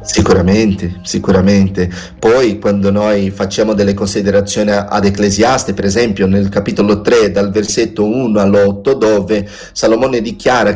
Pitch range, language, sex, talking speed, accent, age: 105-150 Hz, Italian, male, 125 wpm, native, 30-49